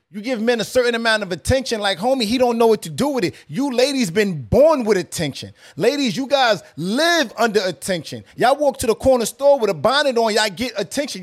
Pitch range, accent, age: 200-245 Hz, American, 30-49